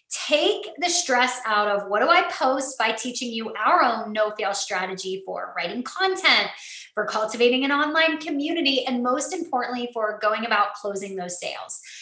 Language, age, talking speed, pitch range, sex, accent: English, 20-39, 165 wpm, 225-300 Hz, female, American